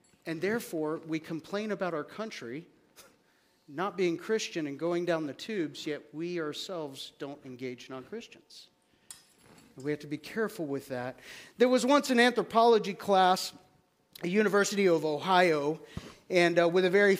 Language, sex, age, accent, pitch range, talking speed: English, male, 40-59, American, 170-235 Hz, 155 wpm